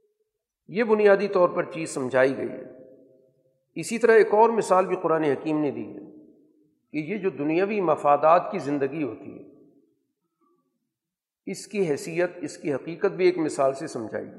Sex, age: male, 50-69